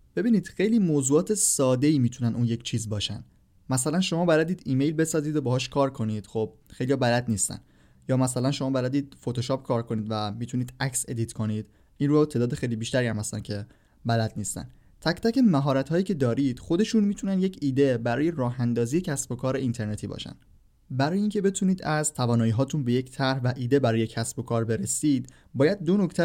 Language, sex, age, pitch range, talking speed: Persian, male, 20-39, 120-155 Hz, 180 wpm